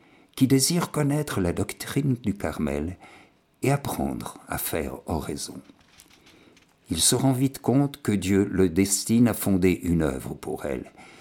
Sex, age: male, 60-79